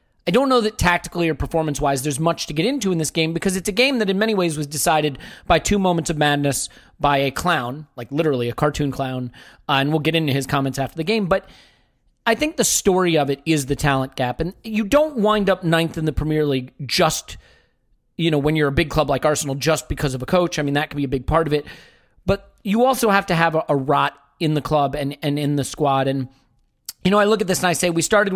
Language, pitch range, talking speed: English, 145-175 Hz, 260 wpm